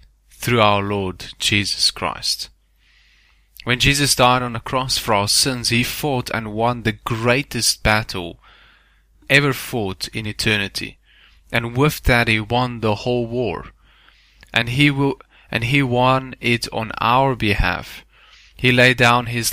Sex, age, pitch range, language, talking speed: male, 20-39, 100-120 Hz, English, 145 wpm